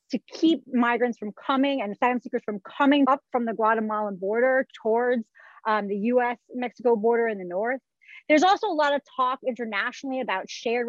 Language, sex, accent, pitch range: English, female, American, 220-285 Hz